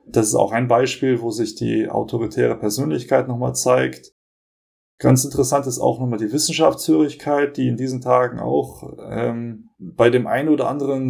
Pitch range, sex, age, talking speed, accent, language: 110-130 Hz, male, 20-39, 160 wpm, German, German